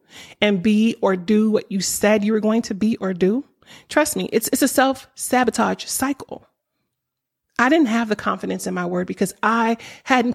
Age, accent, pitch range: 30-49, American, 200-255 Hz